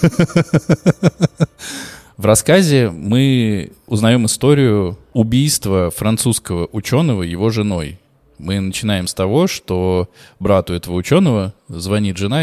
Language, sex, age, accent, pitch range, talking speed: Russian, male, 20-39, native, 90-125 Hz, 95 wpm